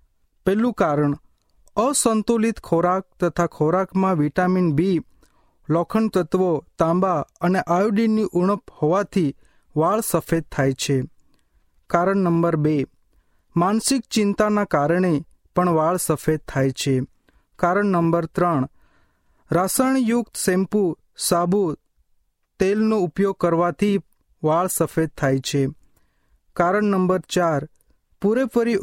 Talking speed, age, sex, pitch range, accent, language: 65 wpm, 30-49, male, 145-200 Hz, native, Hindi